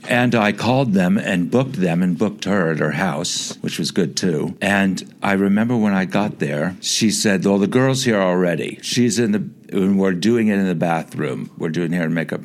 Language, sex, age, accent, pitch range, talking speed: English, male, 60-79, American, 100-160 Hz, 220 wpm